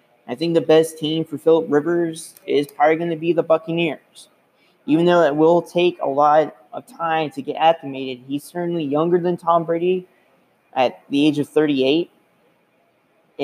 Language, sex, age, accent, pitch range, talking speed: English, male, 20-39, American, 140-170 Hz, 170 wpm